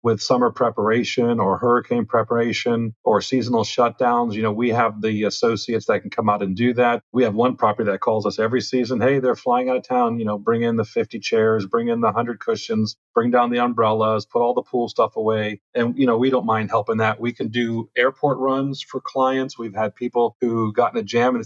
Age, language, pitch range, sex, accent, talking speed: 40-59, English, 110-130 Hz, male, American, 230 wpm